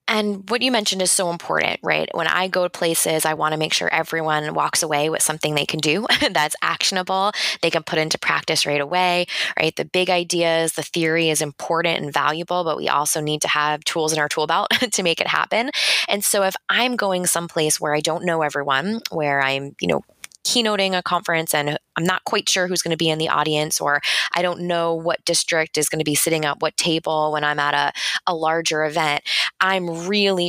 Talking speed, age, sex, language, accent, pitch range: 220 wpm, 20-39, female, English, American, 150-175 Hz